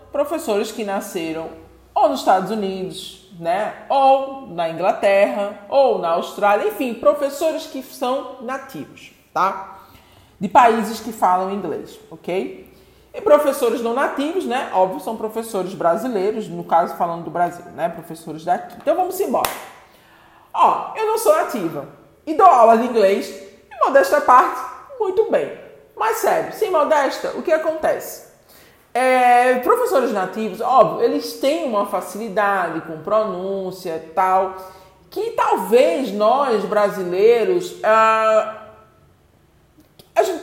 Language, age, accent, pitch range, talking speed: English, 40-59, Brazilian, 200-315 Hz, 130 wpm